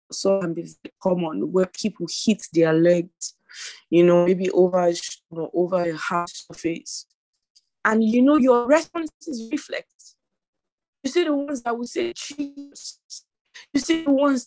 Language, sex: English, female